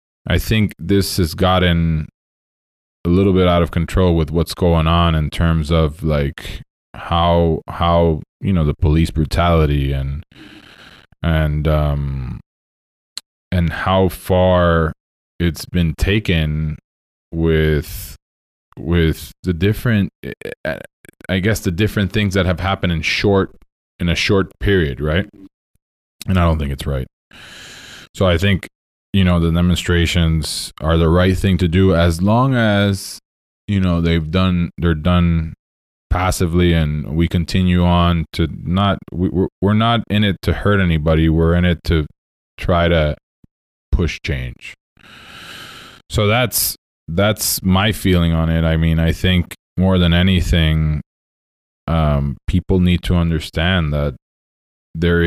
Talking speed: 135 wpm